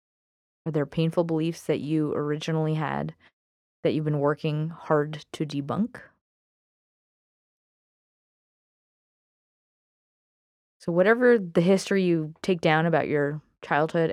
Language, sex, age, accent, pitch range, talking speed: English, female, 20-39, American, 150-190 Hz, 105 wpm